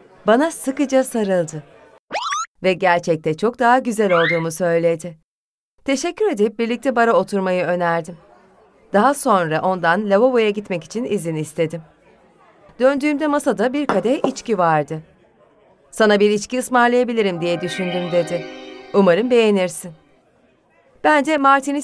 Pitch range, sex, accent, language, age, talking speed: 175-240 Hz, female, native, Turkish, 30-49, 115 wpm